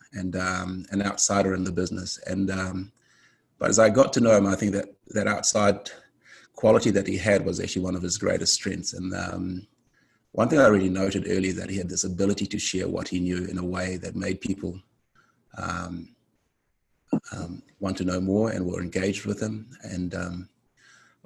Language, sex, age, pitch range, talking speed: English, male, 30-49, 95-110 Hz, 195 wpm